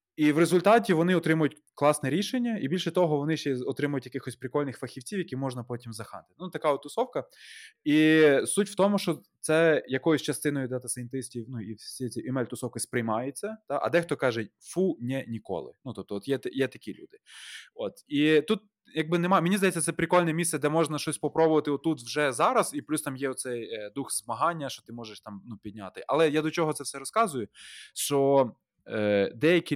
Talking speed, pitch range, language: 185 wpm, 125-165 Hz, Ukrainian